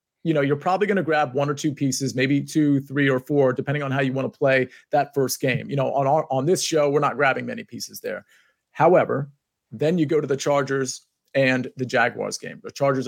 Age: 30-49